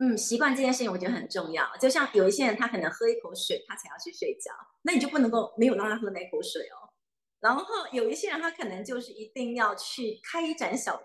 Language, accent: Chinese, native